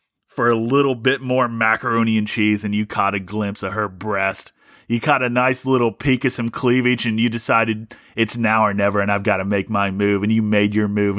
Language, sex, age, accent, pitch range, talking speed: English, male, 30-49, American, 105-135 Hz, 235 wpm